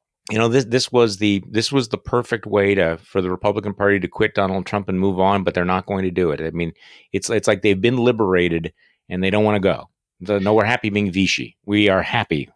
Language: English